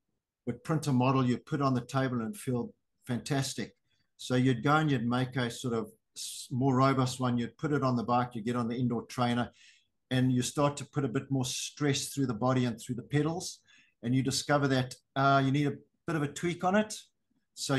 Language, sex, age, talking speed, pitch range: English, male, 50-69, 225 wpm, 120-140 Hz